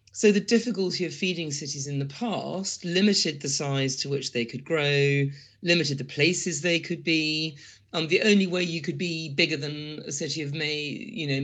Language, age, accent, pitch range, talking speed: English, 40-59, British, 135-170 Hz, 200 wpm